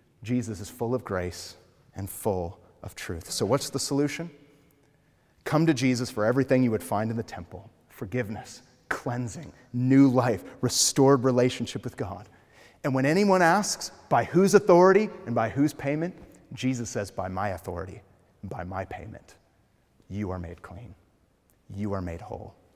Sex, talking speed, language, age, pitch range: male, 160 wpm, English, 30-49, 100-125 Hz